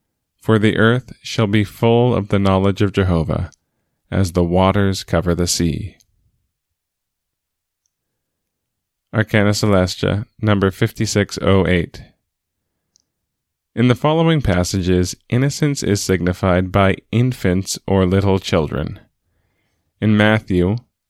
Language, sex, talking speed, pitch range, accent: English, male, 100 wpm, 90-110 Hz, American